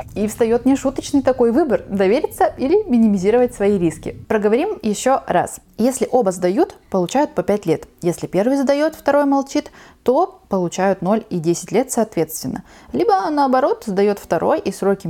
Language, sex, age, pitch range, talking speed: Russian, female, 20-39, 180-255 Hz, 150 wpm